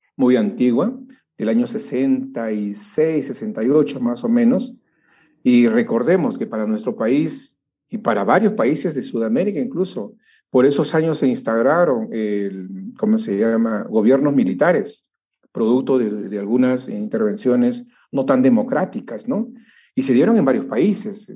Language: Spanish